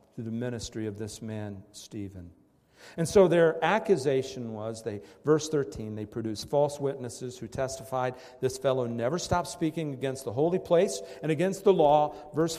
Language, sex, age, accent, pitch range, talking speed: English, male, 50-69, American, 115-160 Hz, 165 wpm